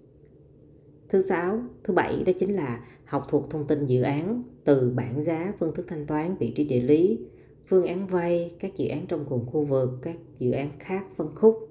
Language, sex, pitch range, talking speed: Vietnamese, female, 130-170 Hz, 205 wpm